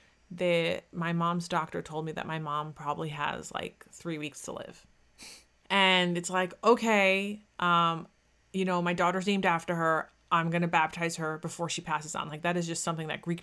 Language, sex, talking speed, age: English, female, 195 wpm, 30-49